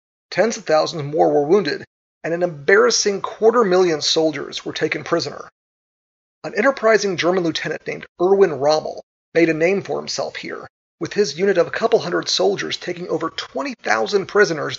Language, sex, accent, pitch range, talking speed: English, male, American, 155-215 Hz, 160 wpm